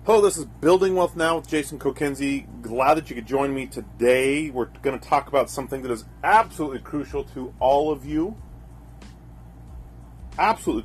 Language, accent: English, American